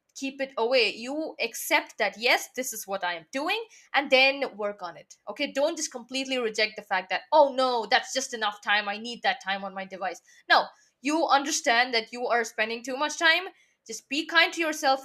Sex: female